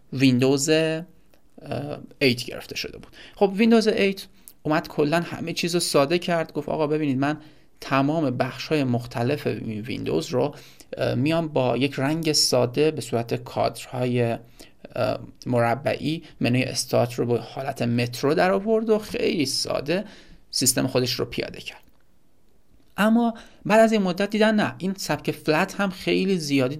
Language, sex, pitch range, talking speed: Persian, male, 130-170 Hz, 140 wpm